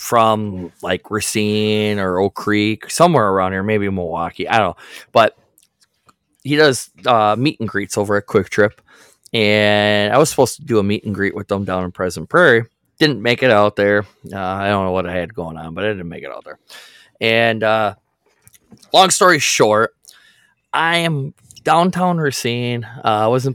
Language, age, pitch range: English, 20-39, 95-120 Hz